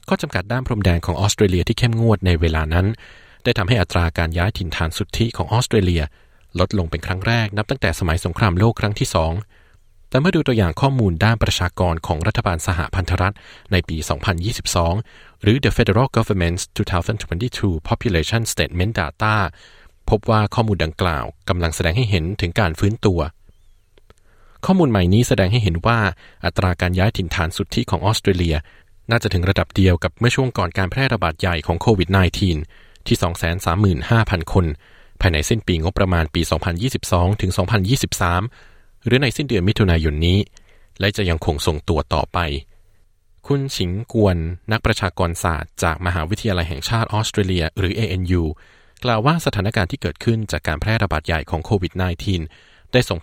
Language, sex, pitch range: Thai, male, 85-110 Hz